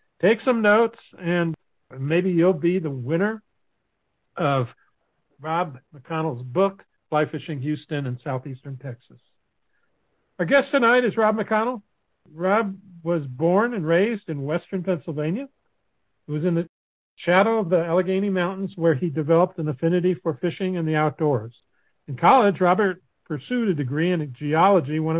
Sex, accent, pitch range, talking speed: male, American, 155-190 Hz, 145 wpm